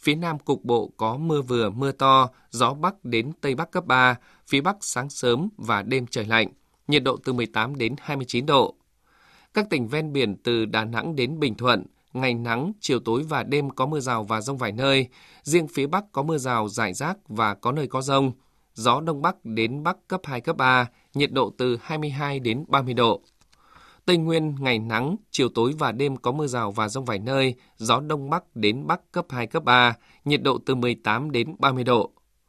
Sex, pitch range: male, 120-150 Hz